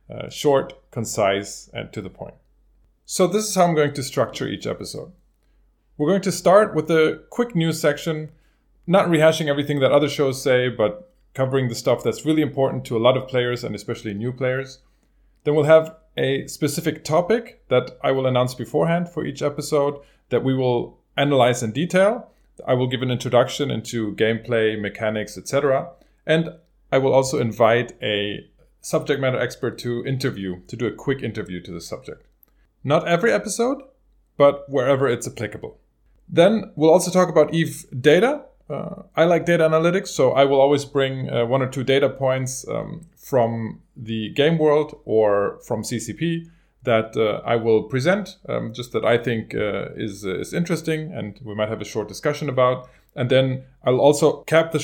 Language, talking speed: English, 180 wpm